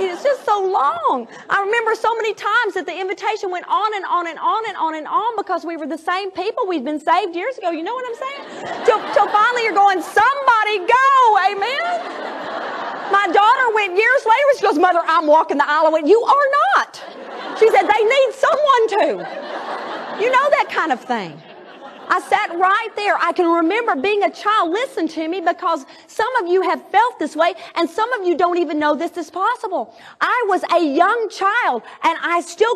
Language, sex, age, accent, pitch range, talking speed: English, female, 40-59, American, 320-430 Hz, 205 wpm